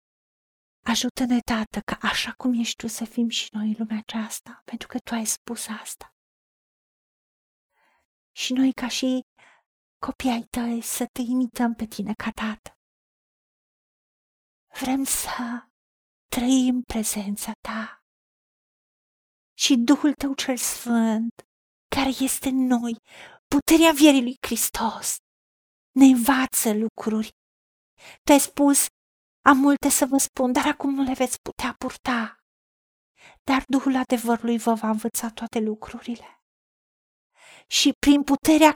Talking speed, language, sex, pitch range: 125 wpm, Romanian, female, 230-275 Hz